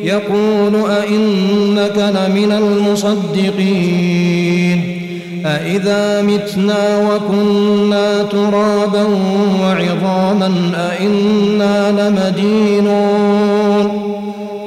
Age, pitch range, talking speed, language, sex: 40-59, 190-205 Hz, 45 wpm, Arabic, male